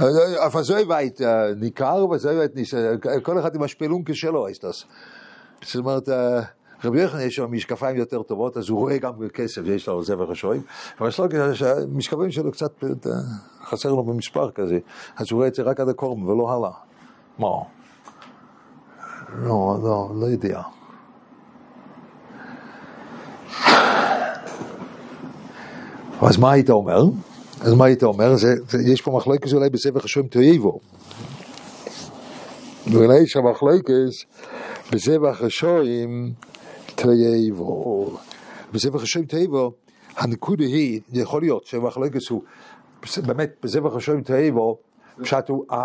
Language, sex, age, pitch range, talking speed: English, male, 50-69, 120-170 Hz, 90 wpm